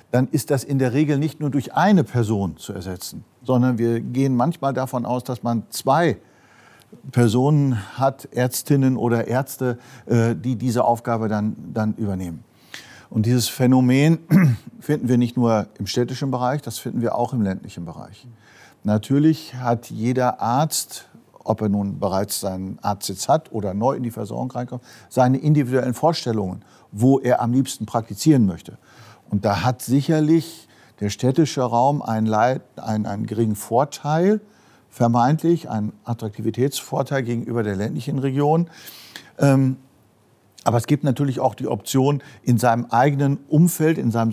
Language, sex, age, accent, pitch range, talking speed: German, male, 50-69, German, 115-135 Hz, 145 wpm